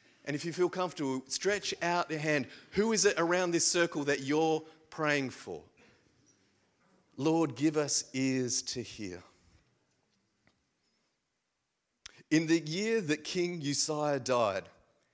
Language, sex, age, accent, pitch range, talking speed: English, male, 40-59, Australian, 140-185 Hz, 125 wpm